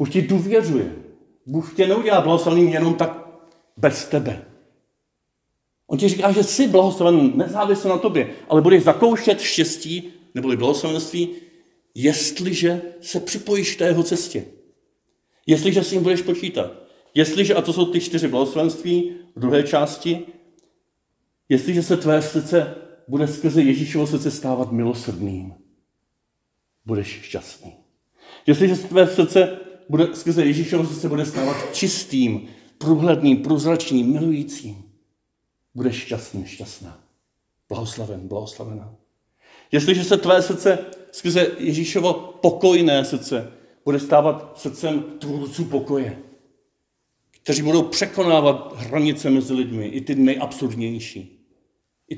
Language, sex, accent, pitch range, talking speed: Czech, male, native, 135-175 Hz, 115 wpm